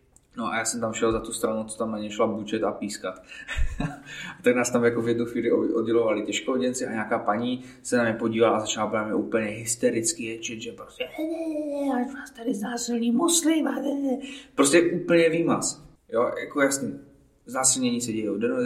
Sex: male